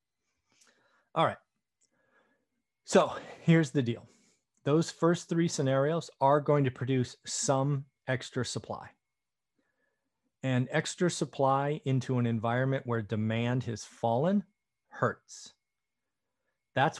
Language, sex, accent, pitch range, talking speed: English, male, American, 115-145 Hz, 100 wpm